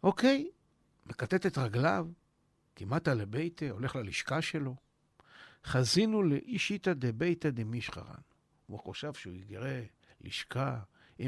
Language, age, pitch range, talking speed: Hebrew, 60-79, 120-160 Hz, 105 wpm